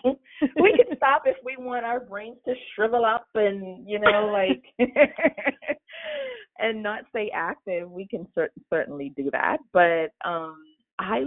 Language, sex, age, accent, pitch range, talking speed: English, female, 30-49, American, 160-250 Hz, 145 wpm